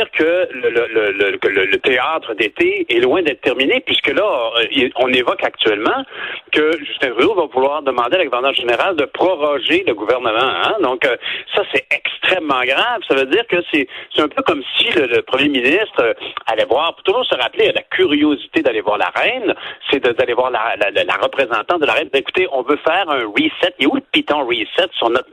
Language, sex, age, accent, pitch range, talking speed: French, male, 60-79, French, 305-430 Hz, 215 wpm